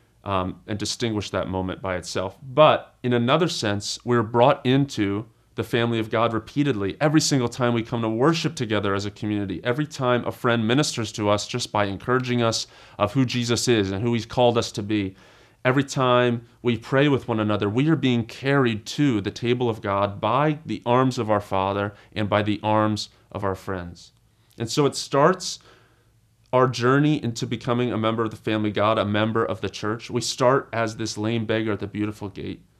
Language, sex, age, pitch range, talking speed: English, male, 30-49, 105-125 Hz, 200 wpm